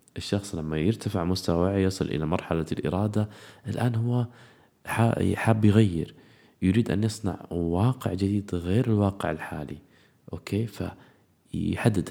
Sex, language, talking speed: male, Arabic, 110 wpm